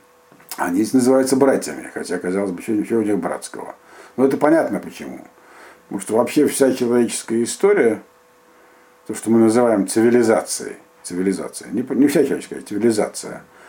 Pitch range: 90-135 Hz